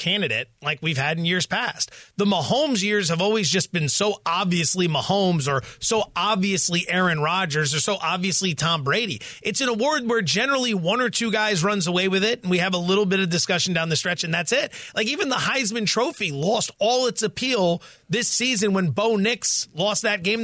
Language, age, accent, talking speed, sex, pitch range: English, 30-49, American, 210 wpm, male, 165-225 Hz